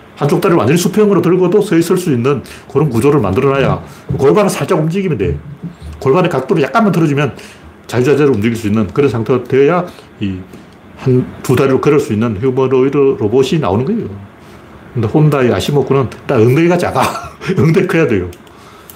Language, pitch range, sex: Korean, 110-150 Hz, male